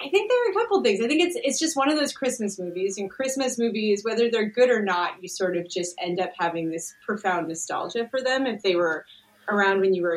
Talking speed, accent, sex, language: 265 wpm, American, female, English